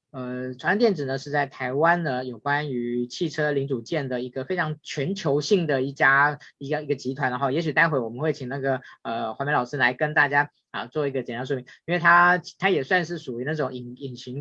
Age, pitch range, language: 20-39, 130-155 Hz, Chinese